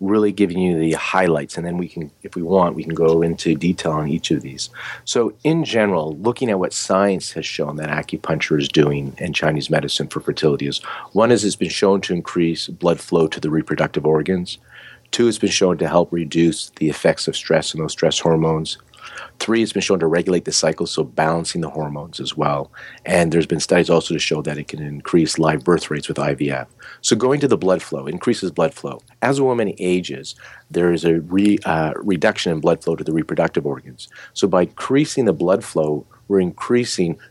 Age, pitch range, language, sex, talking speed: 40-59, 80-100 Hz, English, male, 210 wpm